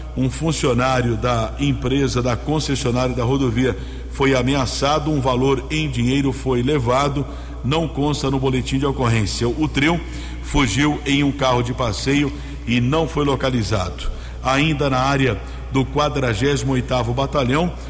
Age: 60-79